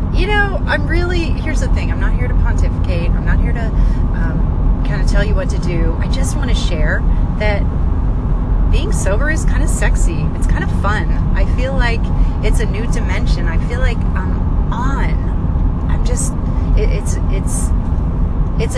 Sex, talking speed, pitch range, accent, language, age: female, 180 wpm, 80-85 Hz, American, English, 30-49